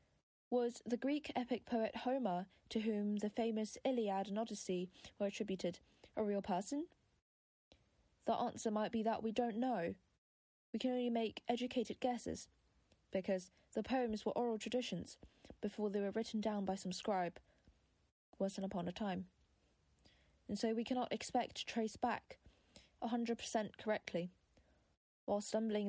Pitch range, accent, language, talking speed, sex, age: 185-235 Hz, British, English, 145 wpm, female, 20-39